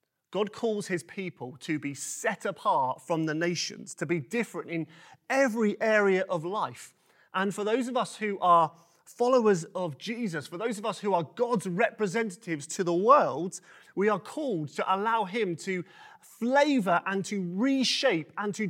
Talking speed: 170 wpm